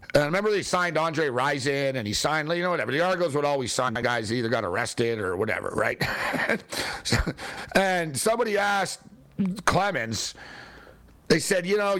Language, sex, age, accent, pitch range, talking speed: English, male, 50-69, American, 135-200 Hz, 170 wpm